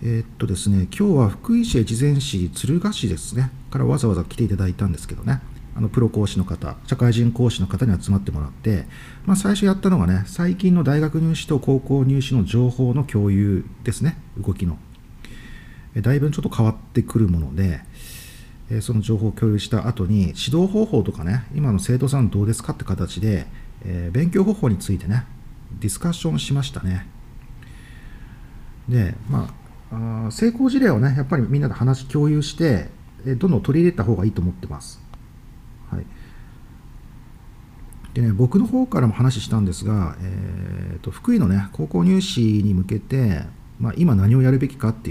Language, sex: Japanese, male